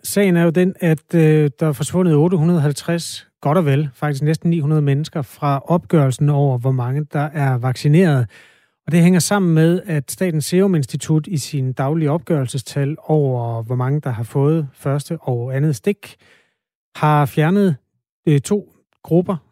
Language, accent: Danish, native